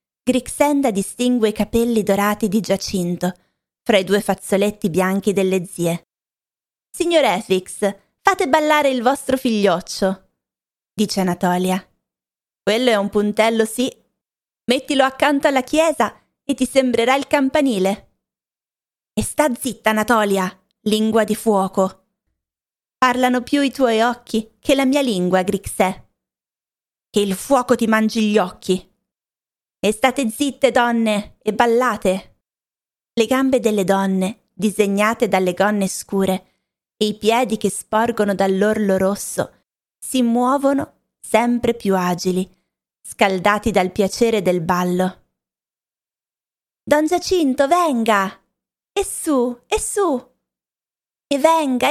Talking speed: 115 wpm